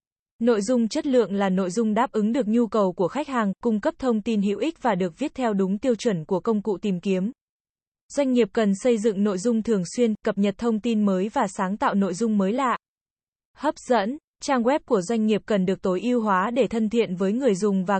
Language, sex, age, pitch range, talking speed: Vietnamese, female, 20-39, 200-245 Hz, 245 wpm